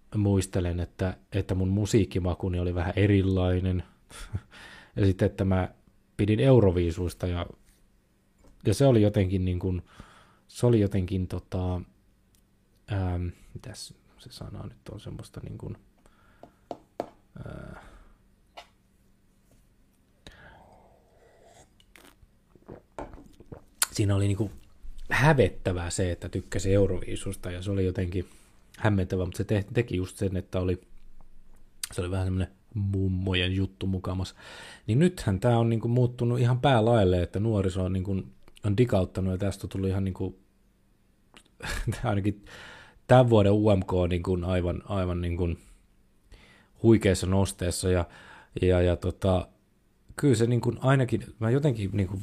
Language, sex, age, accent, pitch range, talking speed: Finnish, male, 20-39, native, 90-105 Hz, 120 wpm